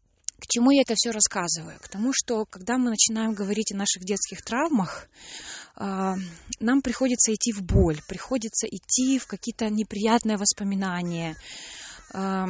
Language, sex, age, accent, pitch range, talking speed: Russian, female, 20-39, native, 185-230 Hz, 135 wpm